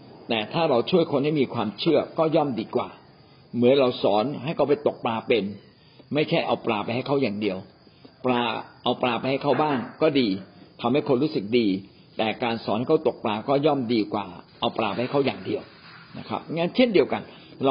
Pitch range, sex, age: 110-150 Hz, male, 60-79